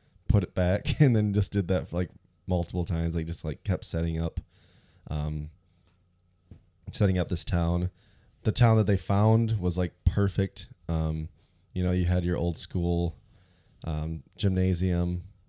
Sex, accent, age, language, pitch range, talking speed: male, American, 20-39, English, 85-95 Hz, 160 wpm